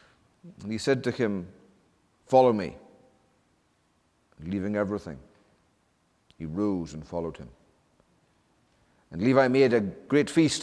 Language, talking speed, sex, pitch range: English, 115 wpm, male, 90-125 Hz